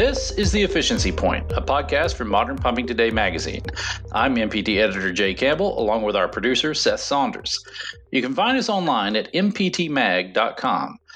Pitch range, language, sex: 110-180 Hz, English, male